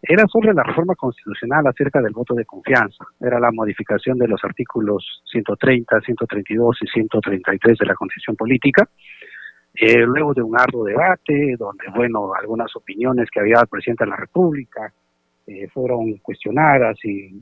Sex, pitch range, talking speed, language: male, 105-140 Hz, 155 wpm, Spanish